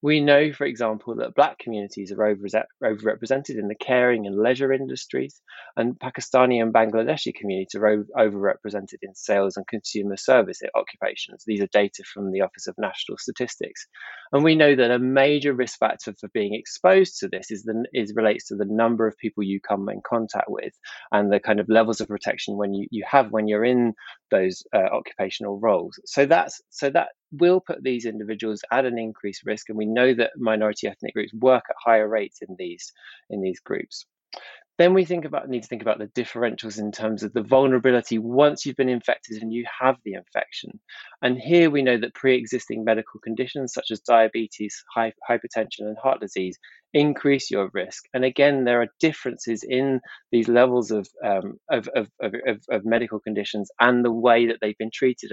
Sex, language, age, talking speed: male, English, 20-39, 190 wpm